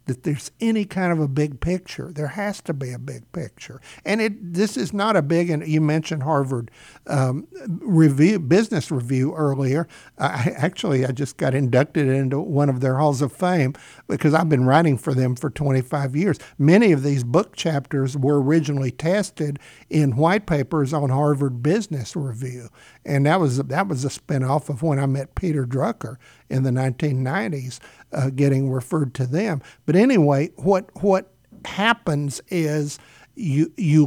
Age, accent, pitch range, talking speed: 60-79, American, 140-175 Hz, 170 wpm